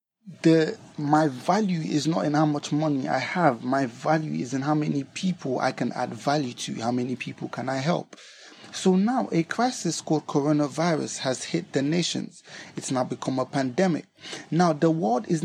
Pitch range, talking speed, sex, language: 155-190 Hz, 185 wpm, male, English